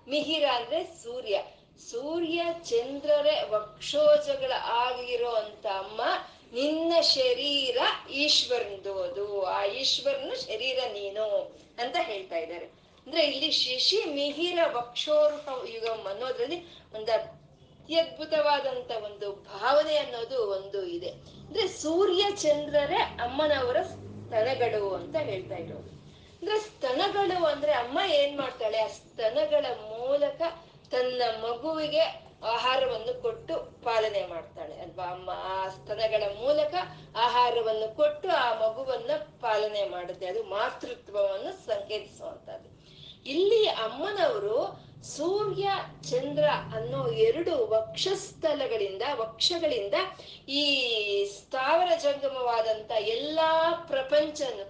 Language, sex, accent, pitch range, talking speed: Kannada, female, native, 220-330 Hz, 90 wpm